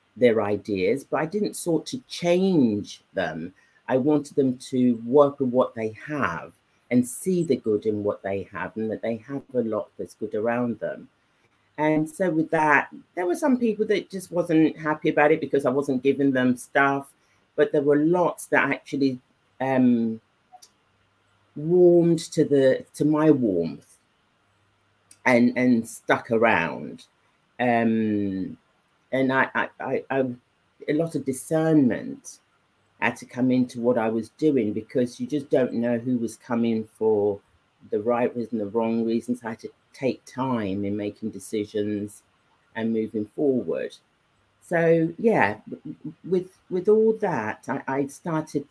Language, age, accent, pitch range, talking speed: English, 40-59, British, 115-150 Hz, 155 wpm